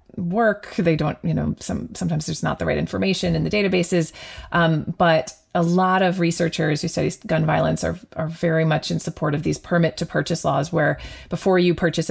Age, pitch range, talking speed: 30-49, 155-180 Hz, 205 wpm